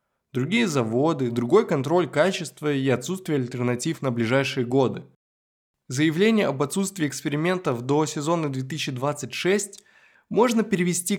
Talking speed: 105 wpm